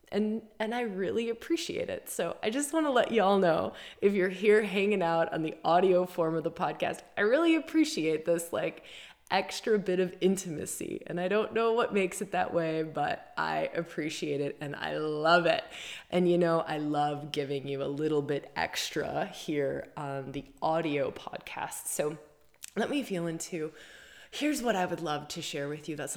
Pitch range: 155-200 Hz